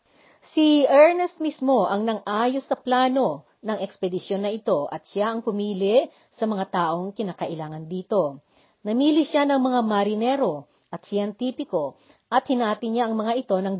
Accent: native